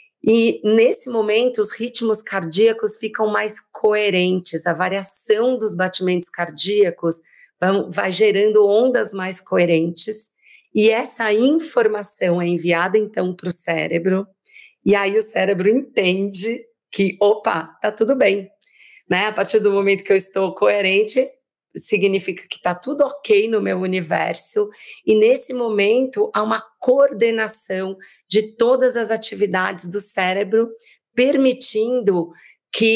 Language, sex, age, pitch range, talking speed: Portuguese, female, 40-59, 185-225 Hz, 125 wpm